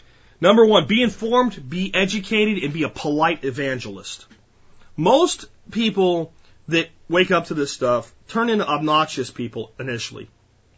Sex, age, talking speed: male, 30-49, 135 wpm